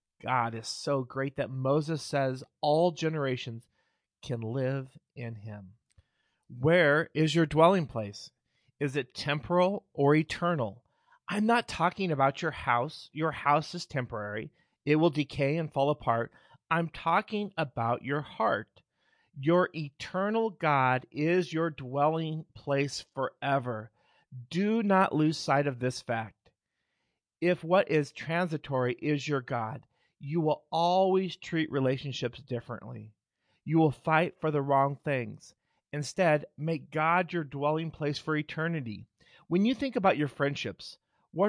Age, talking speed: 40-59, 135 wpm